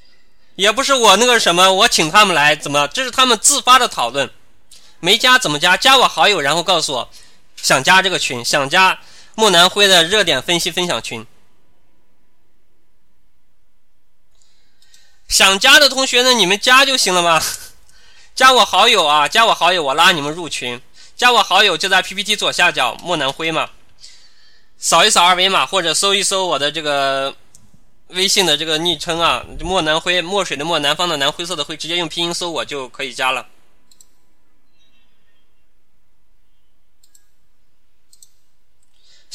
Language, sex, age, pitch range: Chinese, male, 20-39, 155-215 Hz